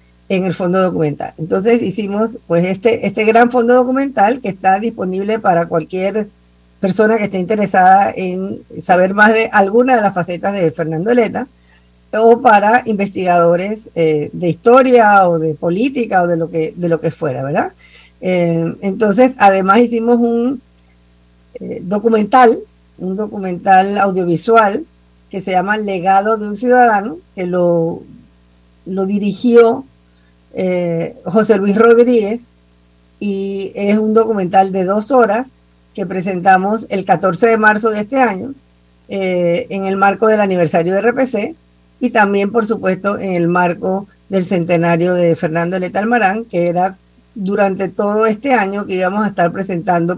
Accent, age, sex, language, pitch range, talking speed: American, 50-69, female, Spanish, 175-220 Hz, 145 wpm